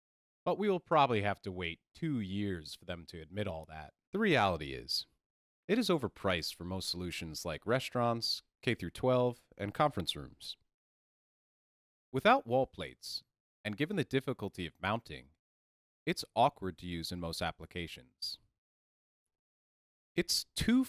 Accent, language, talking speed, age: American, English, 140 wpm, 30-49